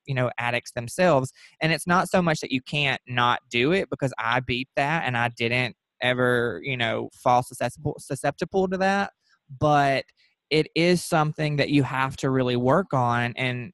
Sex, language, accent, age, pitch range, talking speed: male, English, American, 20-39, 125-150 Hz, 185 wpm